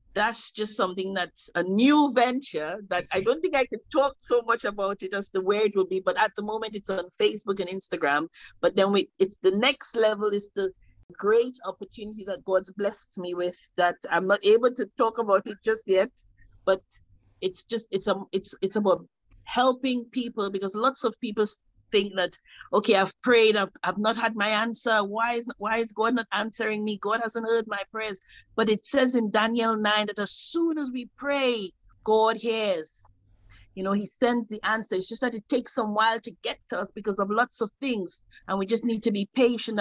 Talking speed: 215 wpm